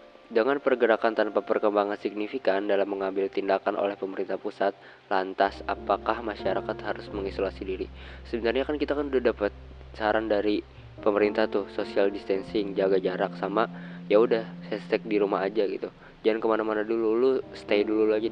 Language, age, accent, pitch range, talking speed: Indonesian, 20-39, native, 100-120 Hz, 150 wpm